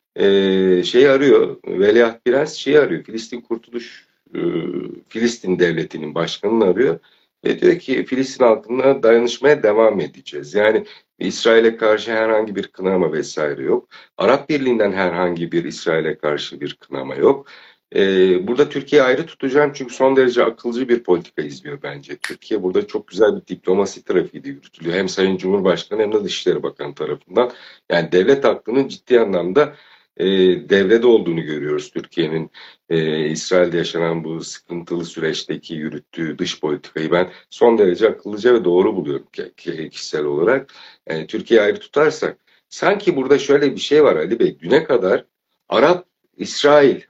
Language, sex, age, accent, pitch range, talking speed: Turkish, male, 60-79, native, 90-140 Hz, 140 wpm